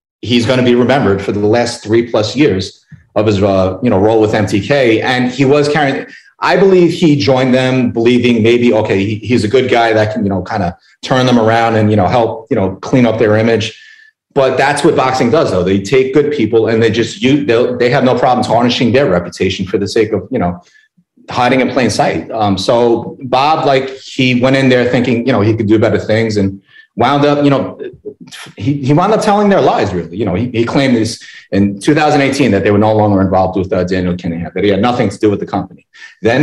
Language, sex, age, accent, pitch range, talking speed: English, male, 30-49, American, 105-135 Hz, 235 wpm